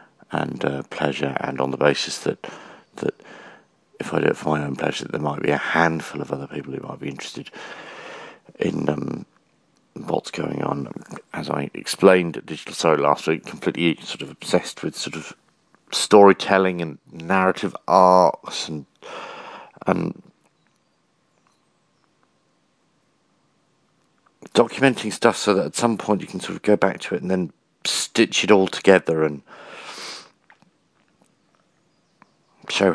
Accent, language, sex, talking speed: British, English, male, 145 wpm